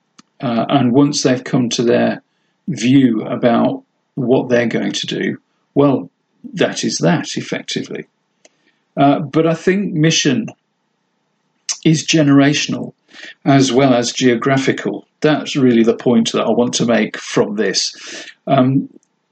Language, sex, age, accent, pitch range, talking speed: English, male, 50-69, British, 130-160 Hz, 140 wpm